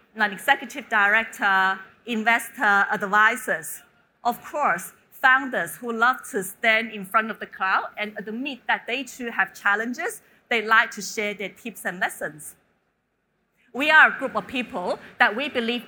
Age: 30-49